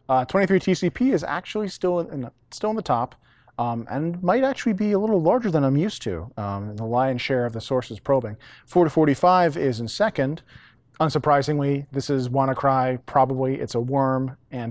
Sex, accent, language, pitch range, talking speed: male, American, English, 120-150 Hz, 195 wpm